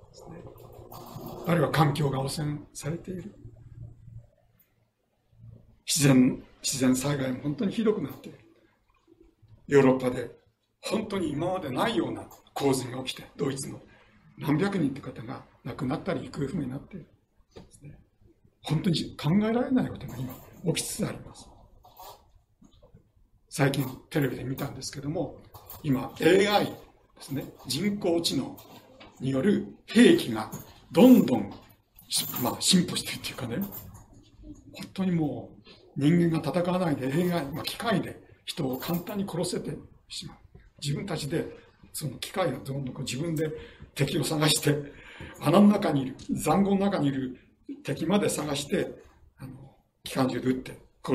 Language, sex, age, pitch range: Japanese, male, 60-79, 125-170 Hz